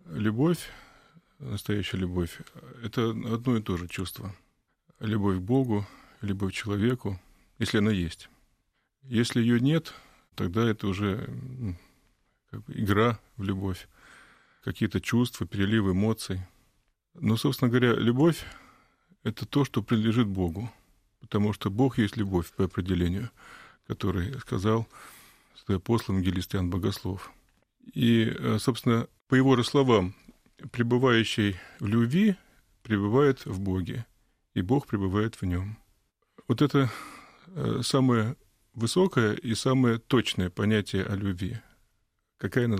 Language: Russian